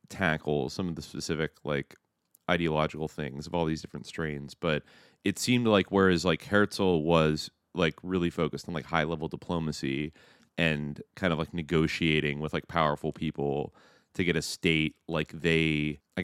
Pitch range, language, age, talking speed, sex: 75-90 Hz, English, 30-49, 165 wpm, male